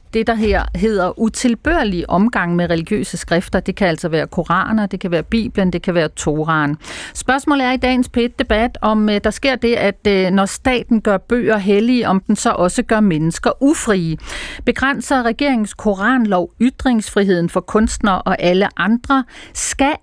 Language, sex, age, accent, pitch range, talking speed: Danish, female, 40-59, native, 180-245 Hz, 165 wpm